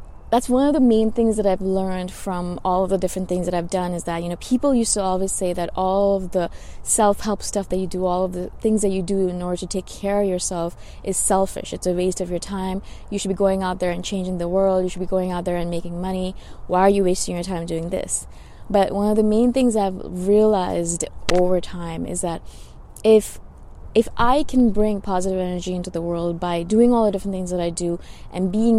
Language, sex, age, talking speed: English, female, 20-39, 245 wpm